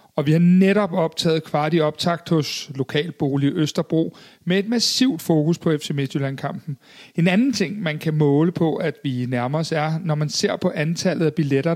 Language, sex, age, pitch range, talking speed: Danish, male, 40-59, 150-185 Hz, 190 wpm